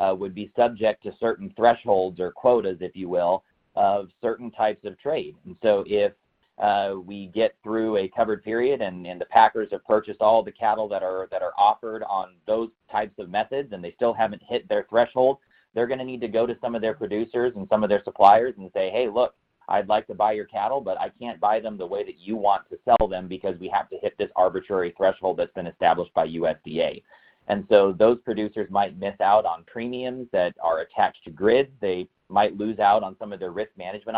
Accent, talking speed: American, 225 wpm